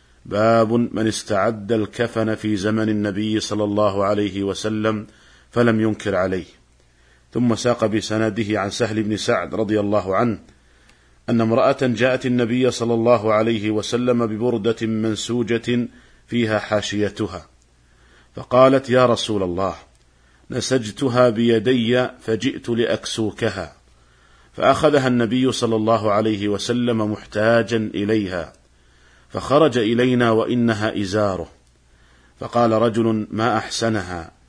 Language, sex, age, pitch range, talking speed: Arabic, male, 50-69, 100-120 Hz, 105 wpm